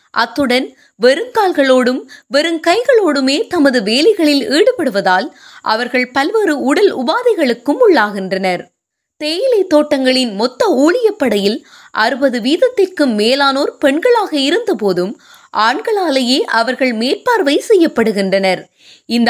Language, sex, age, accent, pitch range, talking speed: Tamil, female, 20-39, native, 245-385 Hz, 85 wpm